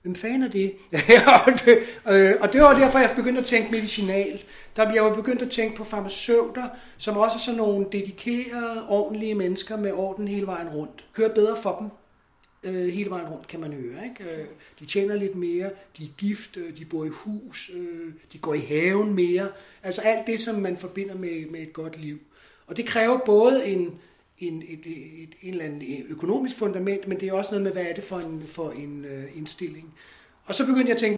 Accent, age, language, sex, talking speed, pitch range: native, 60-79, Danish, male, 200 wpm, 170-215 Hz